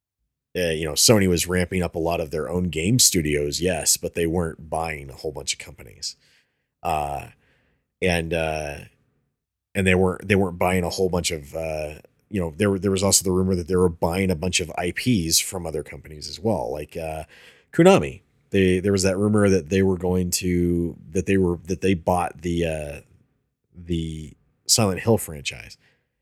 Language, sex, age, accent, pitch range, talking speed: English, male, 30-49, American, 85-100 Hz, 190 wpm